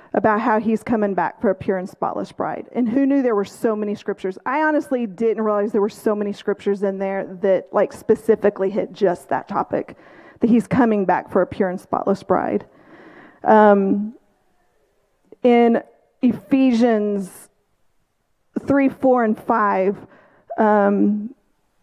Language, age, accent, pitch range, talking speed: English, 40-59, American, 205-260 Hz, 150 wpm